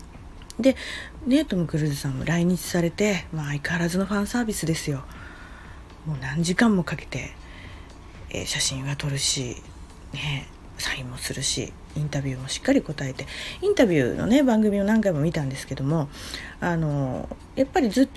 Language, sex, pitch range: Japanese, female, 135-215 Hz